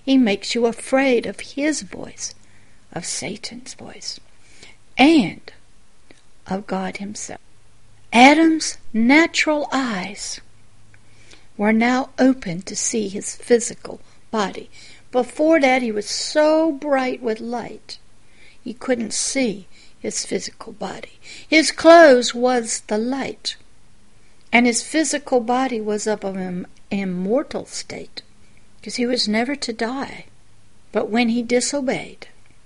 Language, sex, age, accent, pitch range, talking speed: English, female, 60-79, American, 200-260 Hz, 115 wpm